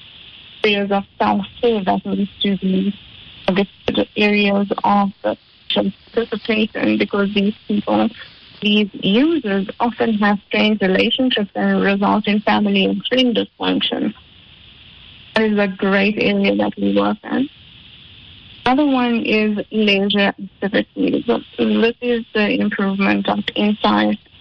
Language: English